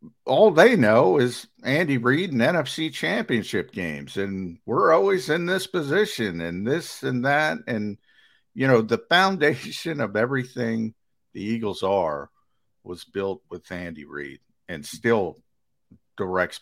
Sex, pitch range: male, 95-125 Hz